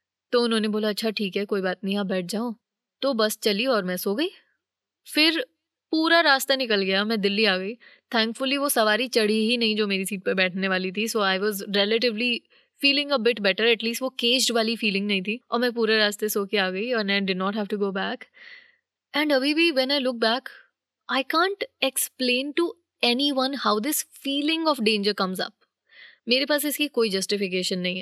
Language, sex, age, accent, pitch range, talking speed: Hindi, female, 20-39, native, 205-270 Hz, 200 wpm